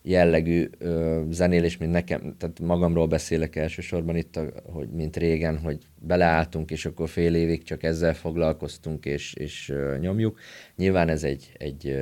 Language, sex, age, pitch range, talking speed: Hungarian, male, 30-49, 80-90 Hz, 140 wpm